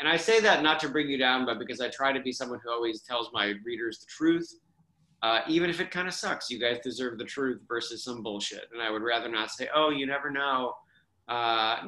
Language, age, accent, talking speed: English, 30-49, American, 250 wpm